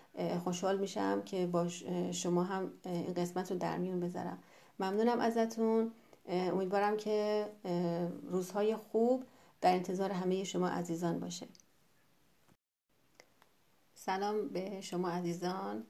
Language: Persian